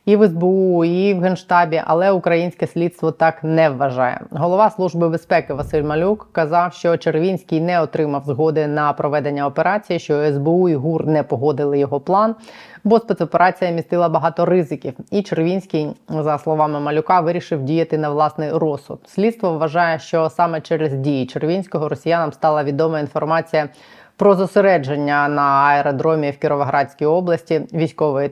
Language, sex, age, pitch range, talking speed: Ukrainian, female, 20-39, 155-180 Hz, 145 wpm